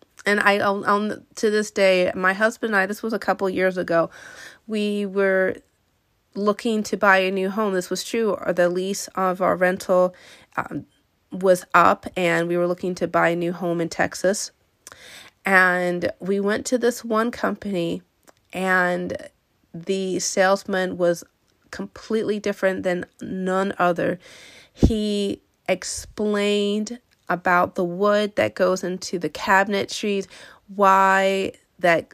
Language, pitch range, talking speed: English, 180-205 Hz, 145 wpm